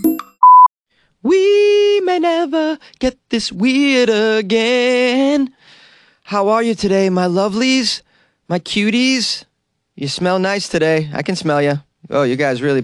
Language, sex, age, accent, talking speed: English, male, 30-49, American, 125 wpm